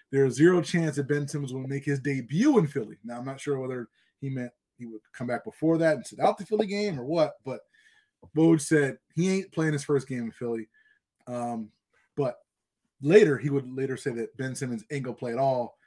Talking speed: 225 wpm